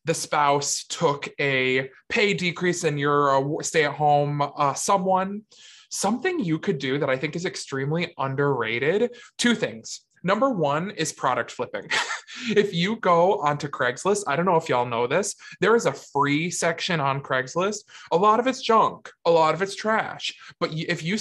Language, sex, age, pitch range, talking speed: English, male, 20-39, 140-205 Hz, 180 wpm